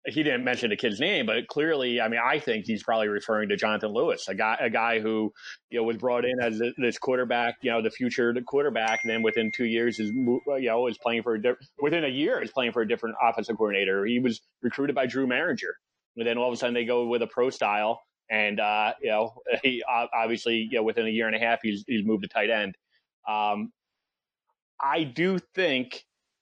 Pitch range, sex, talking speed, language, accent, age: 115-140 Hz, male, 235 wpm, English, American, 30-49